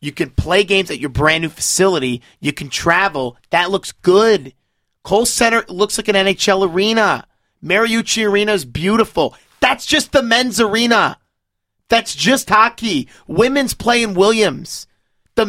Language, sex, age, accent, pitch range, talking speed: English, male, 30-49, American, 175-230 Hz, 150 wpm